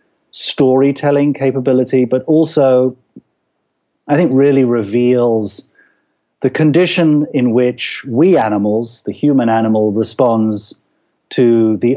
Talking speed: 100 wpm